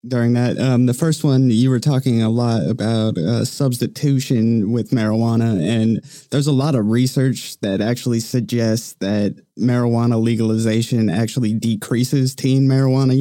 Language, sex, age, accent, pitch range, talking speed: English, male, 20-39, American, 115-130 Hz, 145 wpm